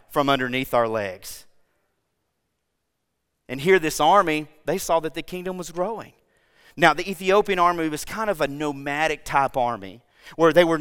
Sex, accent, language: male, American, English